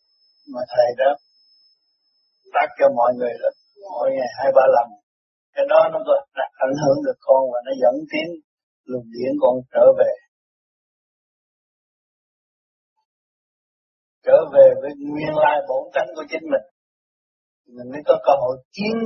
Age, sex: 60-79, male